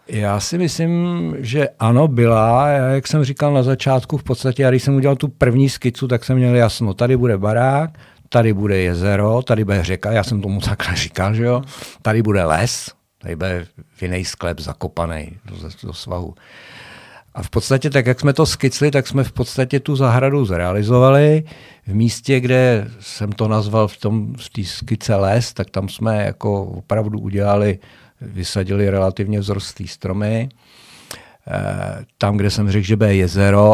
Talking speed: 175 wpm